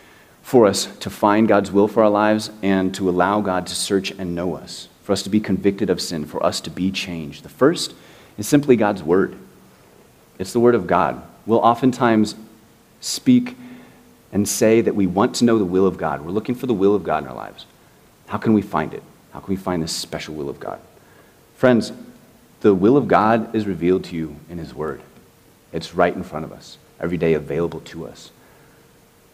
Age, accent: 30-49, American